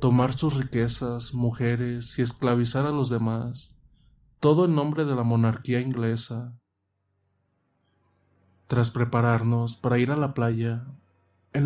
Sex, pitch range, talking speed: male, 110-135 Hz, 125 wpm